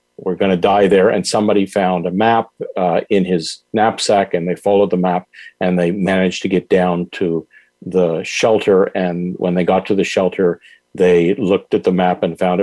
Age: 50-69